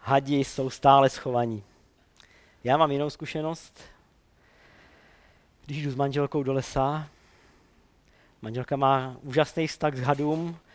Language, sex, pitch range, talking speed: Czech, male, 125-155 Hz, 110 wpm